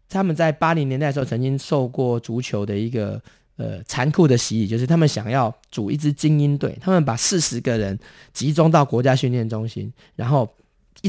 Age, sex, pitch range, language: 20-39, male, 120-165 Hz, Chinese